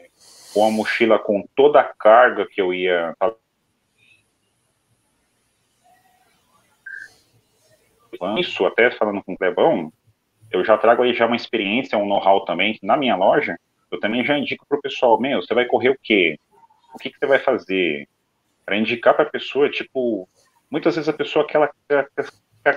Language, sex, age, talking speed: Portuguese, male, 40-59, 155 wpm